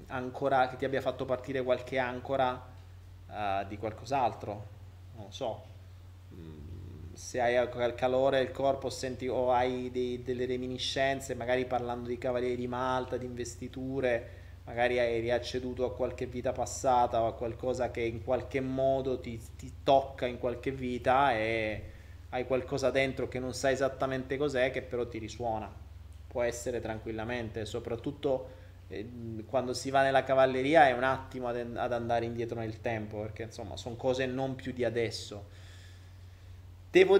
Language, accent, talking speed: Italian, native, 150 wpm